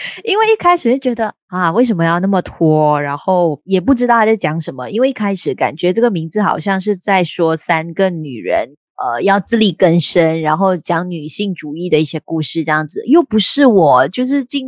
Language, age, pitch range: Chinese, 20-39, 170-245 Hz